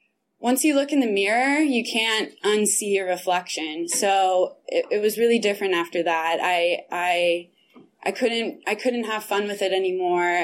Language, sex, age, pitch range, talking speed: English, female, 20-39, 185-215 Hz, 170 wpm